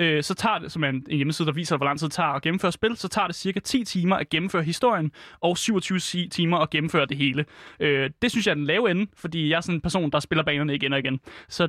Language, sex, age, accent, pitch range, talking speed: Danish, male, 30-49, native, 155-195 Hz, 270 wpm